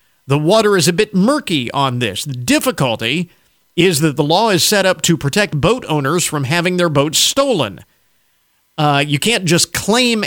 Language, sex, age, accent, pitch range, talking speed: English, male, 50-69, American, 155-255 Hz, 180 wpm